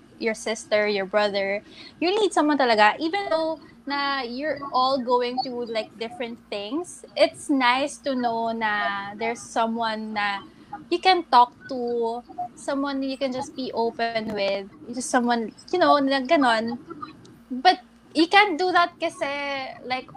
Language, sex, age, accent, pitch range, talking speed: English, female, 20-39, Filipino, 230-285 Hz, 145 wpm